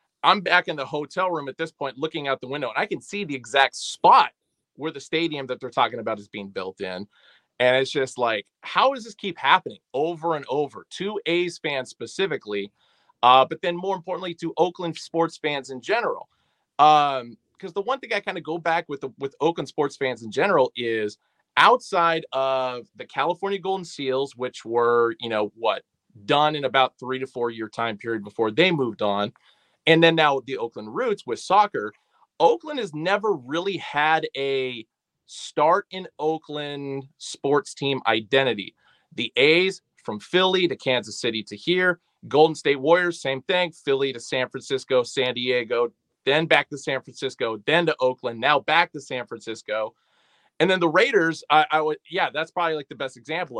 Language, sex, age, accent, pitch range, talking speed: English, male, 30-49, American, 130-175 Hz, 190 wpm